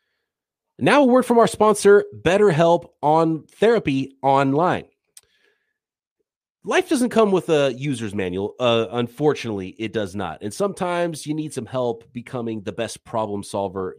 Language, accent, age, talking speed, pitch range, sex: English, American, 30-49, 140 wpm, 110-170 Hz, male